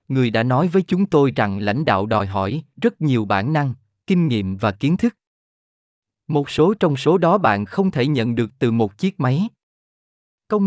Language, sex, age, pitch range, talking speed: Vietnamese, male, 20-39, 110-155 Hz, 195 wpm